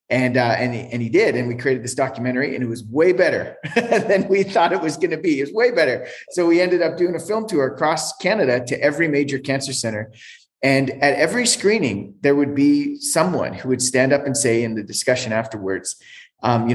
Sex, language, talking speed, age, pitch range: male, English, 230 wpm, 30-49, 120-145 Hz